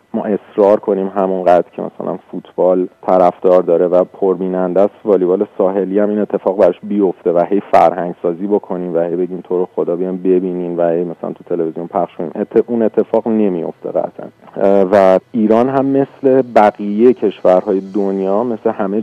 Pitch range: 90-110 Hz